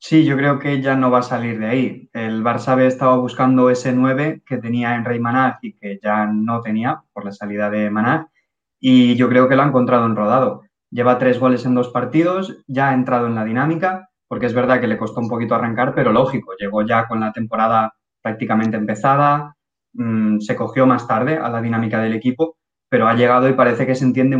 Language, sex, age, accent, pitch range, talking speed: Spanish, male, 20-39, Spanish, 120-140 Hz, 220 wpm